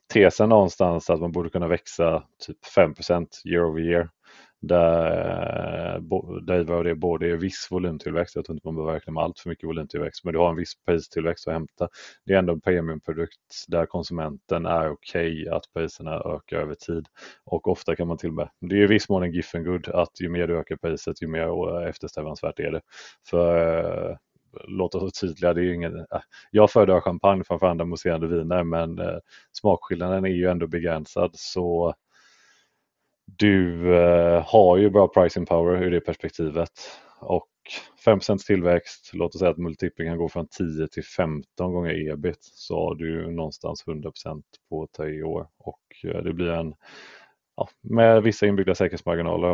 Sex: male